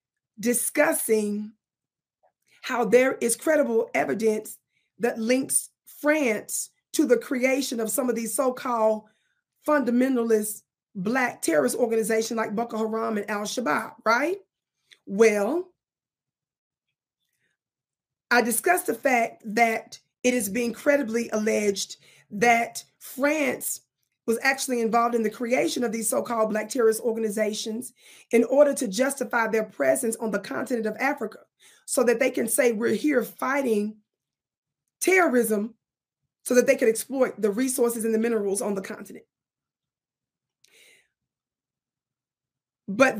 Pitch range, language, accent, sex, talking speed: 215-260 Hz, English, American, female, 120 wpm